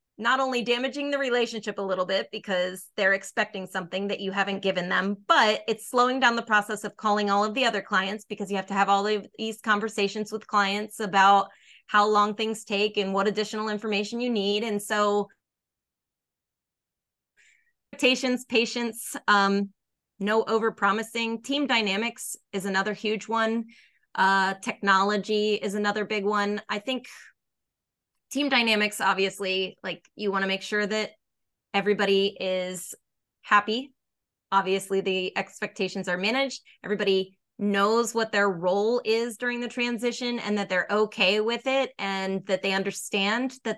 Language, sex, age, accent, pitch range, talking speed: English, female, 20-39, American, 195-225 Hz, 150 wpm